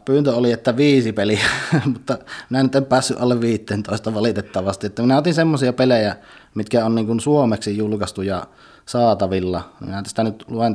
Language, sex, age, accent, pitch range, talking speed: Finnish, male, 20-39, native, 105-120 Hz, 140 wpm